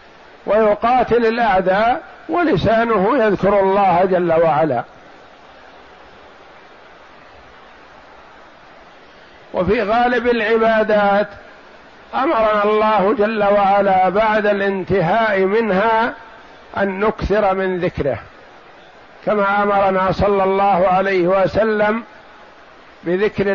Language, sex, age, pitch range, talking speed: Arabic, male, 50-69, 190-210 Hz, 70 wpm